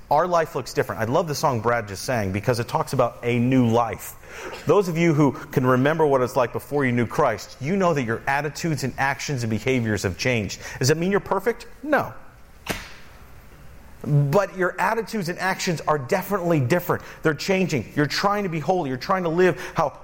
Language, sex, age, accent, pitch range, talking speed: English, male, 40-59, American, 115-165 Hz, 205 wpm